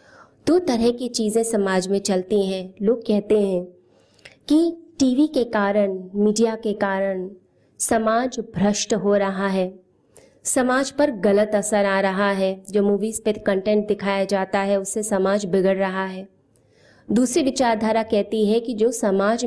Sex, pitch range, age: female, 195-235 Hz, 20-39